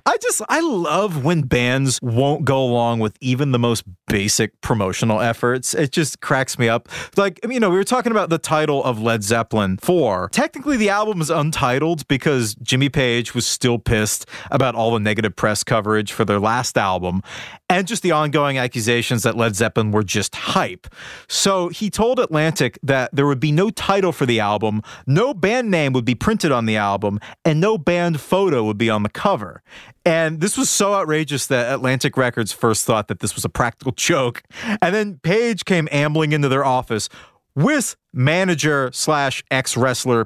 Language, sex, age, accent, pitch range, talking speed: English, male, 30-49, American, 115-165 Hz, 185 wpm